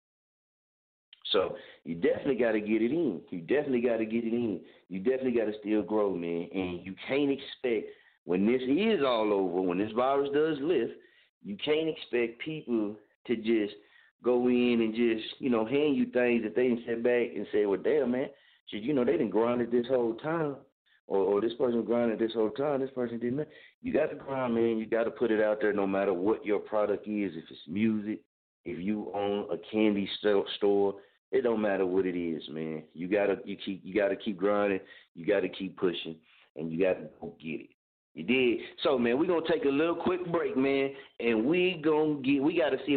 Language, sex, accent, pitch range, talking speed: English, male, American, 105-140 Hz, 215 wpm